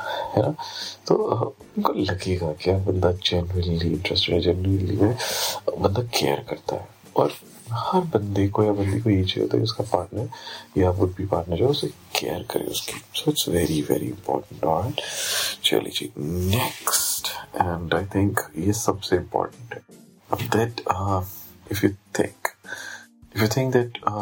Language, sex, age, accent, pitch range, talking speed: Hindi, male, 40-59, native, 90-110 Hz, 60 wpm